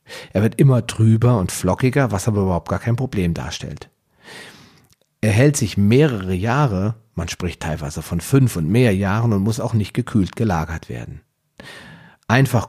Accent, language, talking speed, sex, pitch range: German, German, 160 wpm, male, 95-125 Hz